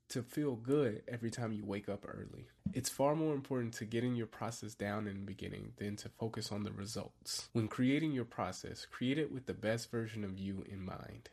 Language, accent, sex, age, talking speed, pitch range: English, American, male, 20-39, 215 wpm, 105-130 Hz